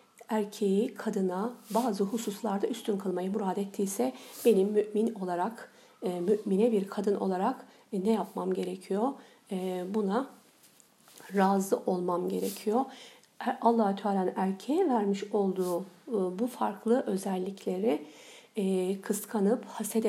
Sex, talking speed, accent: female, 95 wpm, native